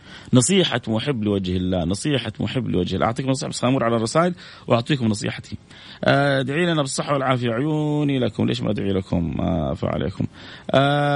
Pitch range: 115-145 Hz